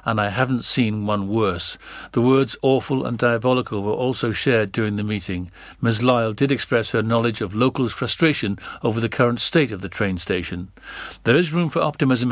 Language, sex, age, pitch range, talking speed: English, male, 60-79, 110-135 Hz, 190 wpm